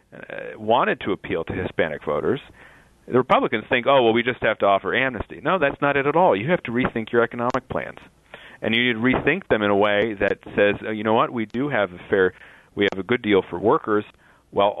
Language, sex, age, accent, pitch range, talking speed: English, male, 40-59, American, 95-115 Hz, 235 wpm